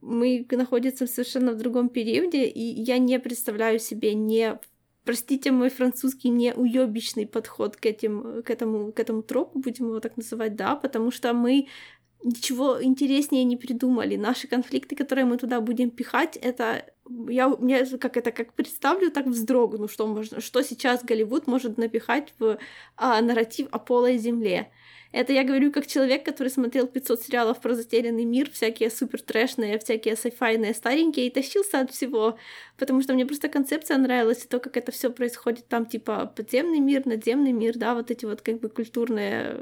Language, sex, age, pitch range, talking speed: Ukrainian, female, 20-39, 230-265 Hz, 170 wpm